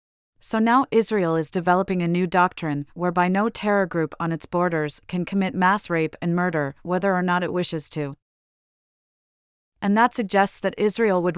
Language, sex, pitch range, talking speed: English, female, 165-195 Hz, 175 wpm